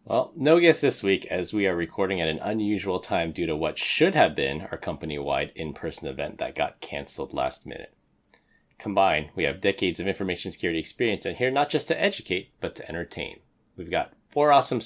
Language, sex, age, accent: English, male, 30-49, American